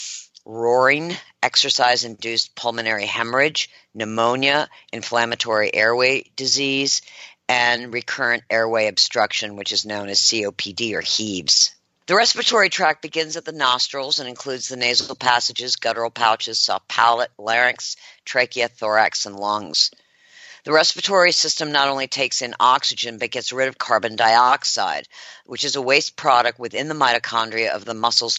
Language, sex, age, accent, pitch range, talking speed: English, female, 50-69, American, 115-145 Hz, 135 wpm